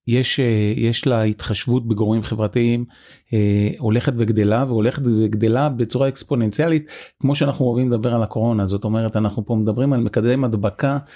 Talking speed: 145 wpm